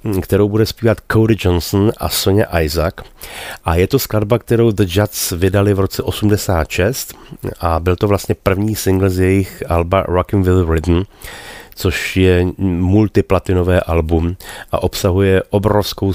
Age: 30-49